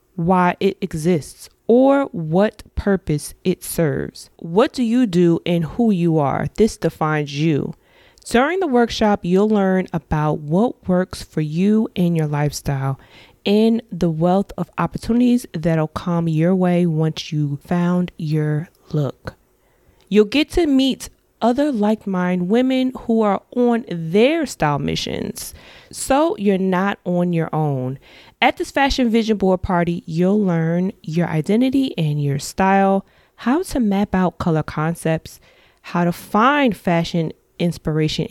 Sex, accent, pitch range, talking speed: female, American, 165-225 Hz, 140 wpm